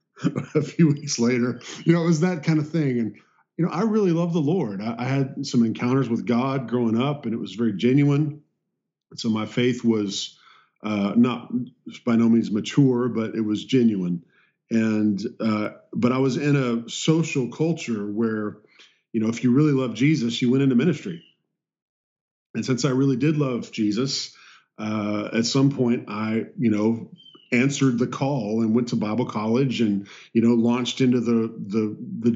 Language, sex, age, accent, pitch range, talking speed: English, male, 40-59, American, 115-135 Hz, 185 wpm